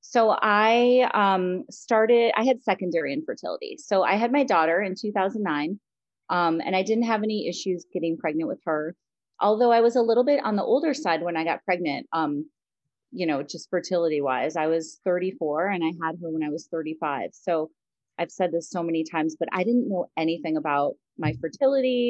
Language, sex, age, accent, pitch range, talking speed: English, female, 30-49, American, 160-195 Hz, 195 wpm